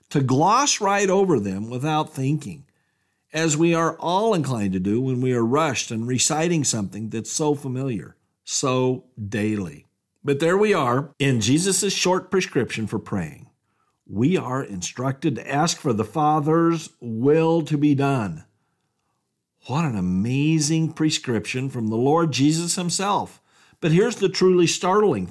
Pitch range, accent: 130-175 Hz, American